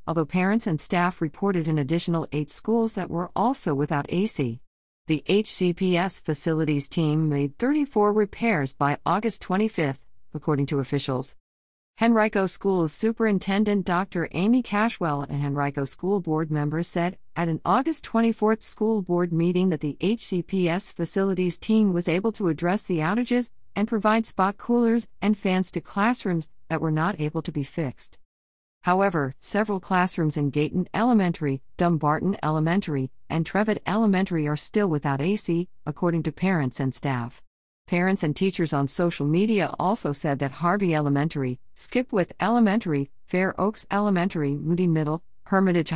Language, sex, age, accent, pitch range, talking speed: English, female, 50-69, American, 150-200 Hz, 145 wpm